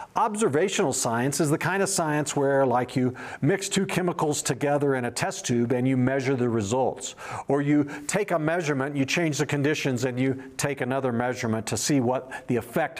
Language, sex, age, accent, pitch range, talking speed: English, male, 50-69, American, 130-180 Hz, 195 wpm